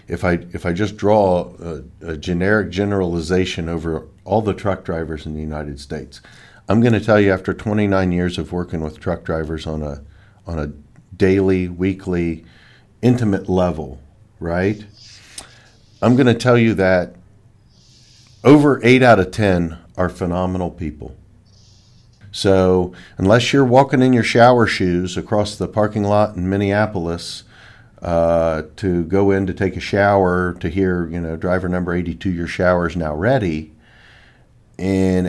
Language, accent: English, American